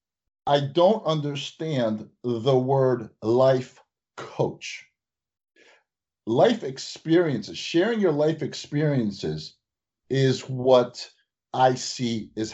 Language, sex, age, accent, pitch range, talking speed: English, male, 50-69, American, 120-160 Hz, 85 wpm